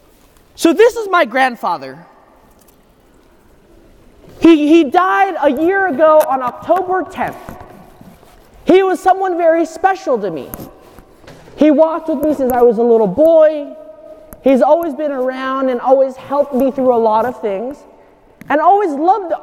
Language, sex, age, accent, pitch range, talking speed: English, male, 20-39, American, 270-345 Hz, 145 wpm